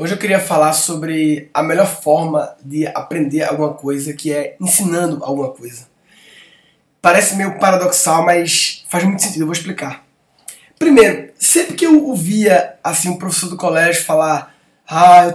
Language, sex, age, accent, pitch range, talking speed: Portuguese, male, 20-39, Brazilian, 160-220 Hz, 155 wpm